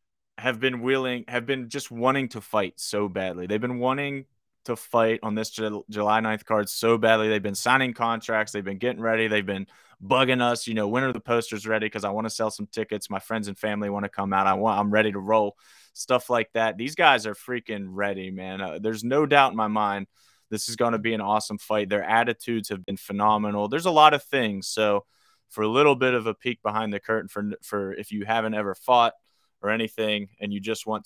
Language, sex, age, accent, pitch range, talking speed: English, male, 20-39, American, 100-115 Hz, 240 wpm